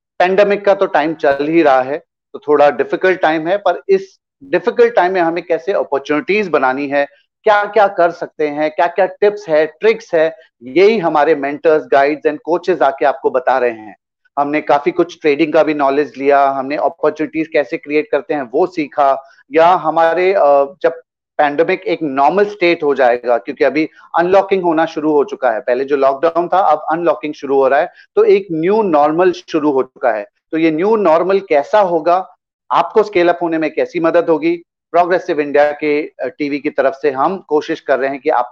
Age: 30-49